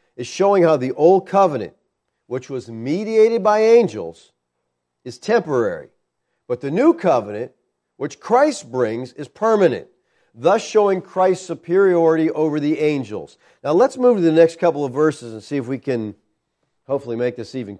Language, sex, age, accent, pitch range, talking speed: English, male, 50-69, American, 125-195 Hz, 160 wpm